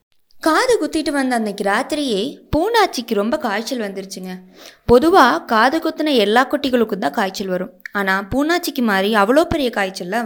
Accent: native